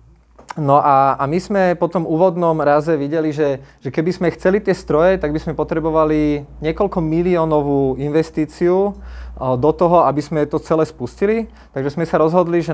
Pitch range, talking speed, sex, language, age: 135-170 Hz, 175 wpm, male, Slovak, 20-39